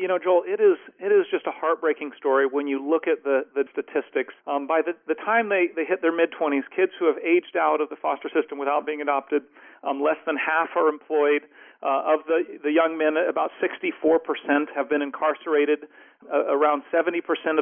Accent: American